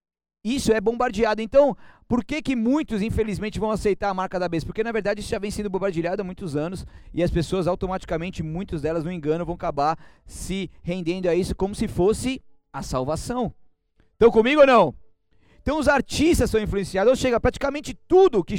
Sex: male